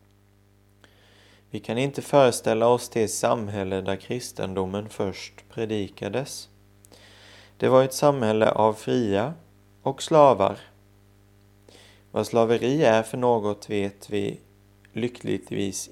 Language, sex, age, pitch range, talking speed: Swedish, male, 30-49, 100-115 Hz, 100 wpm